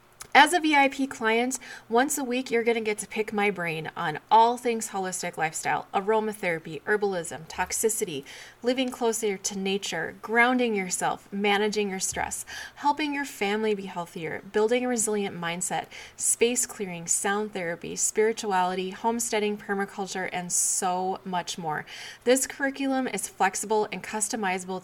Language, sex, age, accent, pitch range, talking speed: English, female, 20-39, American, 180-225 Hz, 140 wpm